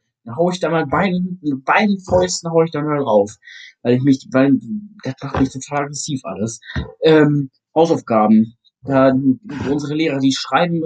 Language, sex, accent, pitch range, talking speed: German, male, German, 130-185 Hz, 165 wpm